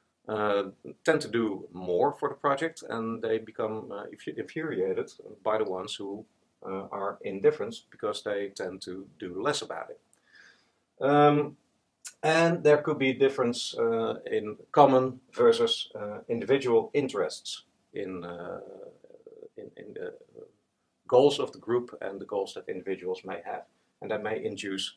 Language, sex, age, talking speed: Dutch, male, 50-69, 145 wpm